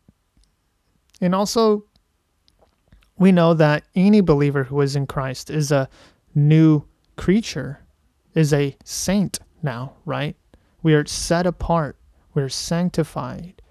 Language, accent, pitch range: English, American, 140-175 Hz